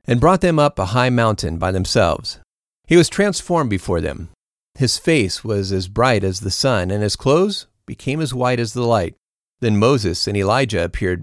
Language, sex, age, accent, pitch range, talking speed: English, male, 40-59, American, 95-135 Hz, 190 wpm